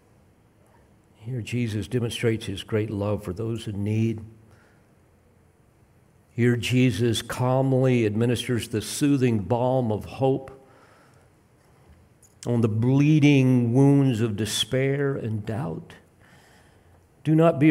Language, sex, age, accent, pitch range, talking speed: English, male, 50-69, American, 110-150 Hz, 100 wpm